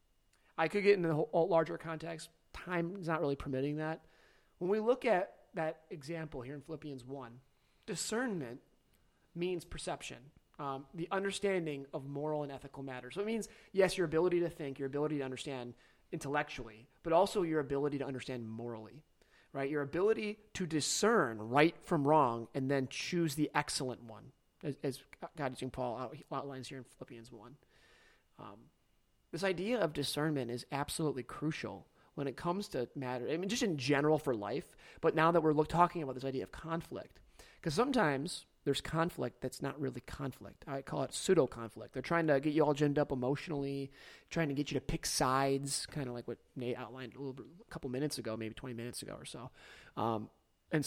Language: English